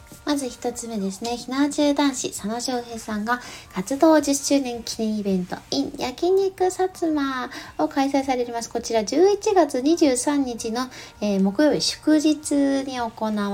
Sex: female